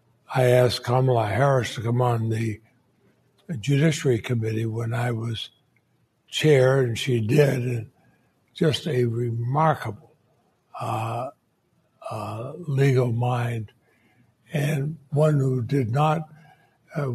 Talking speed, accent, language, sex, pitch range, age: 110 wpm, American, English, male, 120-145 Hz, 60-79